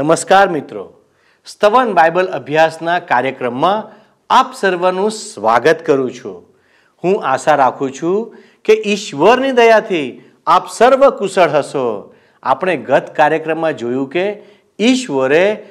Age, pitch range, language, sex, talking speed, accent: 50-69, 150-225 Hz, Gujarati, male, 105 wpm, native